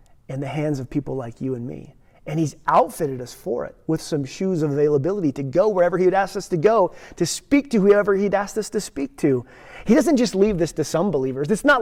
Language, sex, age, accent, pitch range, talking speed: English, male, 30-49, American, 145-205 Hz, 250 wpm